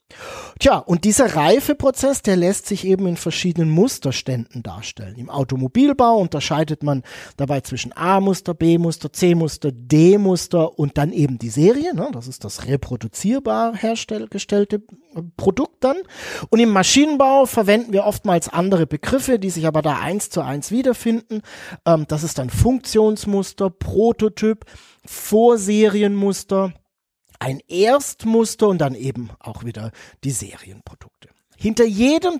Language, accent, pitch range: German, German, 150-230 Hz